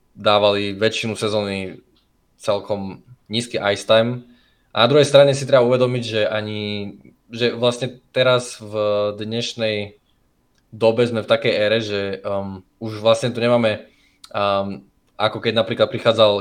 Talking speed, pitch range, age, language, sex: 135 wpm, 100-115 Hz, 20-39, Slovak, male